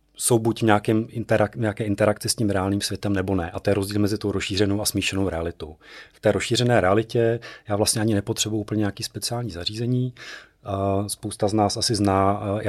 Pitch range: 95-105 Hz